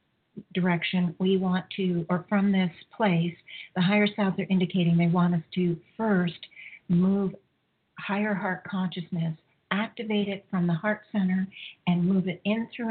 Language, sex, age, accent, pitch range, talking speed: English, female, 50-69, American, 170-200 Hz, 155 wpm